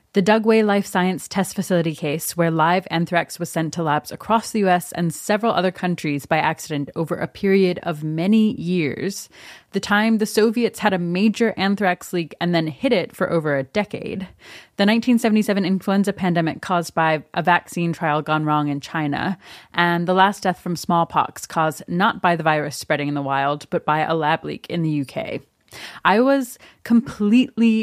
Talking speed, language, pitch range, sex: 185 wpm, English, 160-210 Hz, female